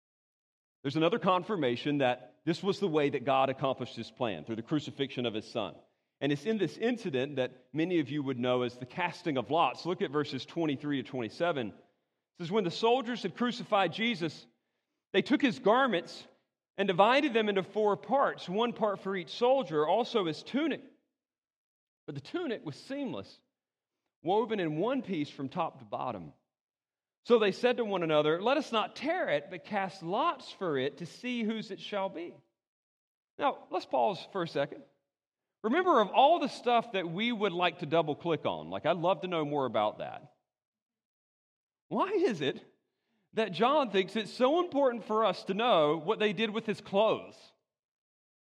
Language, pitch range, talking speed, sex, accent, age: English, 150-230 Hz, 185 wpm, male, American, 40-59